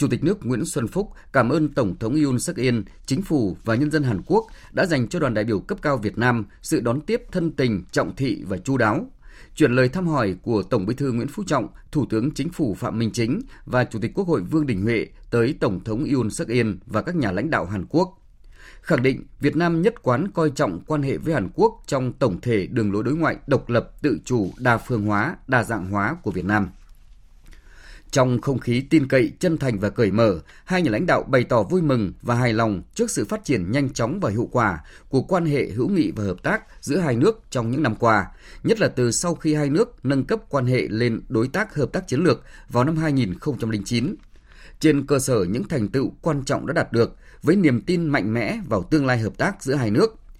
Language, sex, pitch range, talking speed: Vietnamese, male, 115-155 Hz, 240 wpm